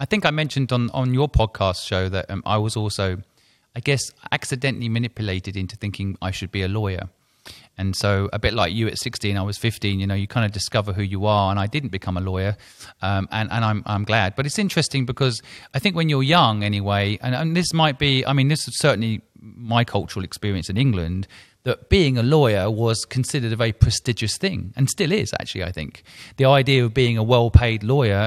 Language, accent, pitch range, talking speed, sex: English, British, 105-130 Hz, 225 wpm, male